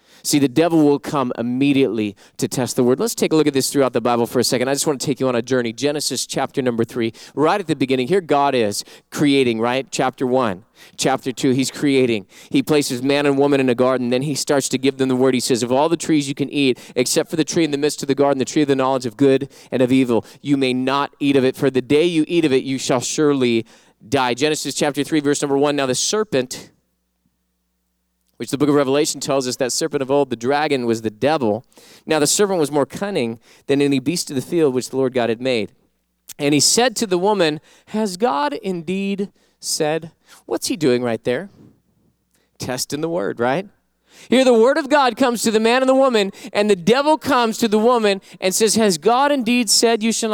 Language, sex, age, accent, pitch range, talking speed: English, male, 30-49, American, 130-200 Hz, 240 wpm